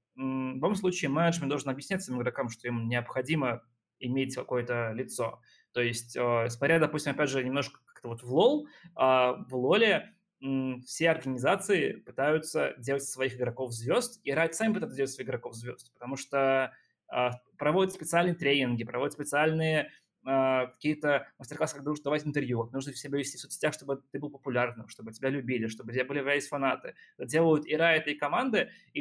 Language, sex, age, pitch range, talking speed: Russian, male, 20-39, 125-155 Hz, 165 wpm